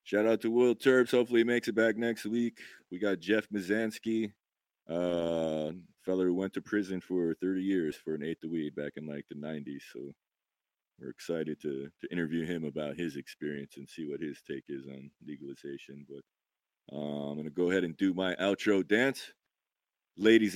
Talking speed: 190 wpm